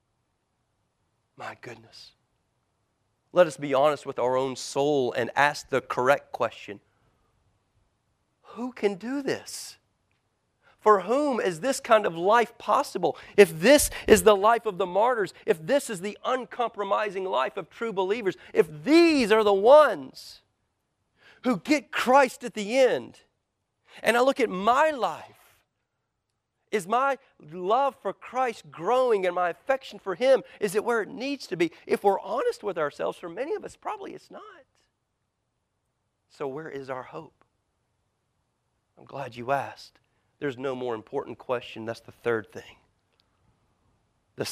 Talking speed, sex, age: 150 wpm, male, 40-59